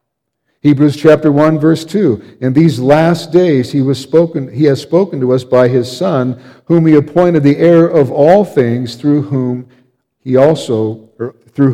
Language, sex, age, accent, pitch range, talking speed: English, male, 50-69, American, 115-145 Hz, 170 wpm